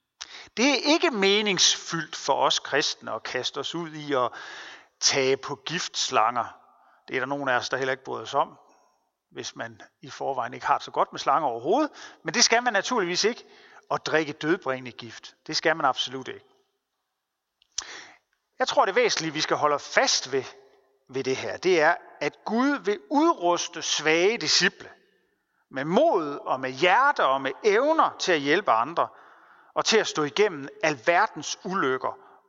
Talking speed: 175 wpm